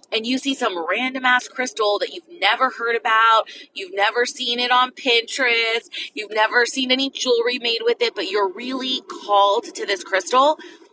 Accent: American